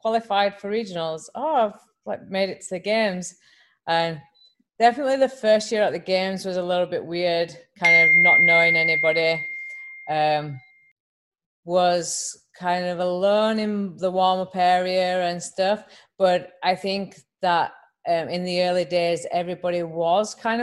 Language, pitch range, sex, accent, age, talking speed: English, 155-185 Hz, female, British, 30-49, 150 wpm